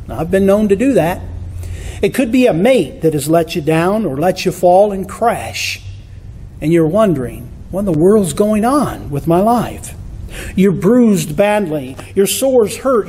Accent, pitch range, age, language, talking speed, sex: American, 160-225 Hz, 50-69, English, 190 wpm, male